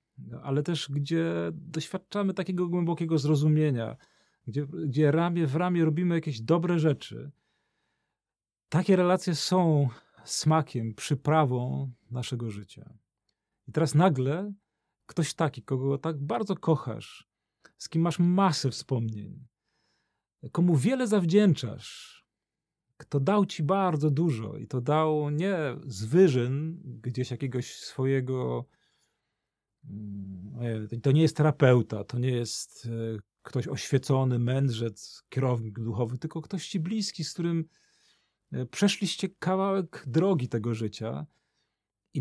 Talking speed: 110 wpm